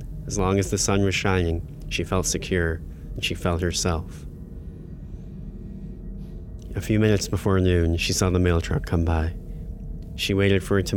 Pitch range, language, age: 85-95 Hz, English, 20-39